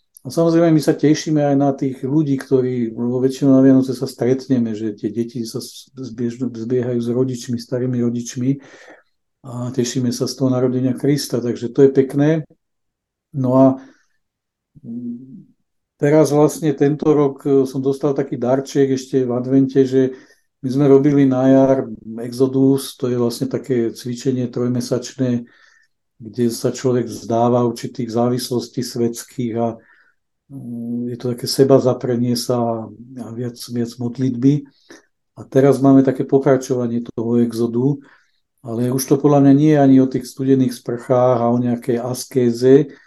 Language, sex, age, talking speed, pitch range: Czech, male, 50-69, 140 wpm, 120-135 Hz